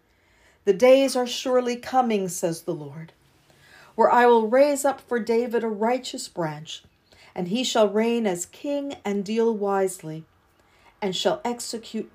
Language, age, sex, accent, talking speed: English, 50-69, female, American, 150 wpm